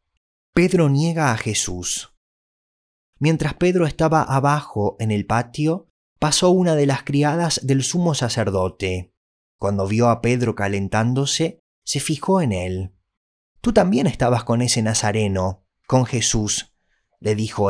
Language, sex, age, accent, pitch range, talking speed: Spanish, male, 20-39, Argentinian, 95-155 Hz, 130 wpm